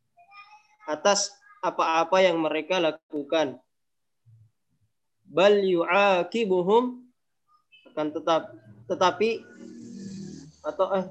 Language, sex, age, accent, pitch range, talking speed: Indonesian, male, 20-39, native, 150-200 Hz, 65 wpm